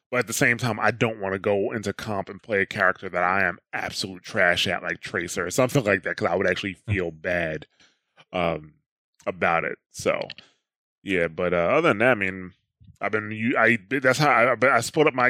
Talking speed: 220 wpm